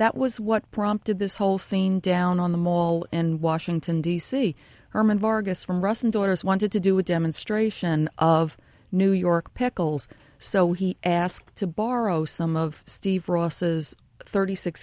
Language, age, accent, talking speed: English, 40-59, American, 160 wpm